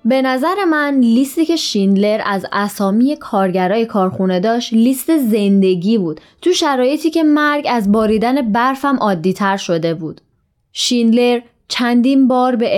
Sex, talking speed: female, 135 wpm